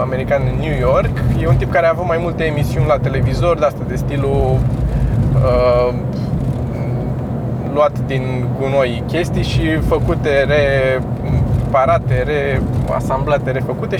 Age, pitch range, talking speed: 20-39, 125-155 Hz, 125 wpm